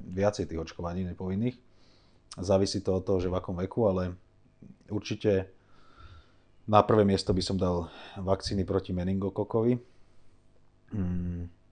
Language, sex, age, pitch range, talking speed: Slovak, male, 30-49, 85-105 Hz, 125 wpm